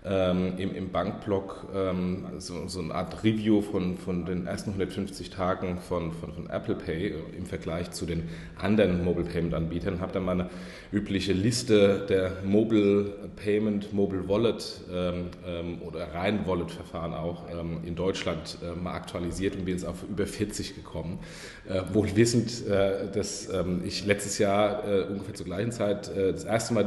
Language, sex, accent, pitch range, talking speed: German, male, German, 90-100 Hz, 170 wpm